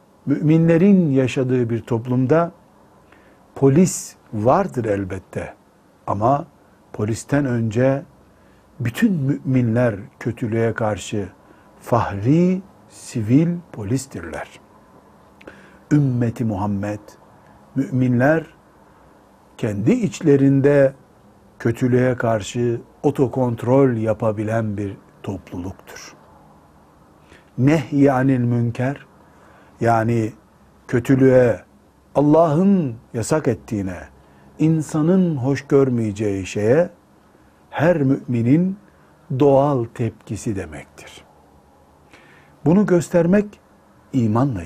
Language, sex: Turkish, male